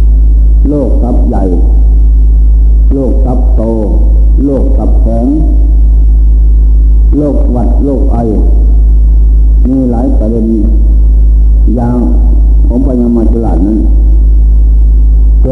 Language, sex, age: Thai, male, 60-79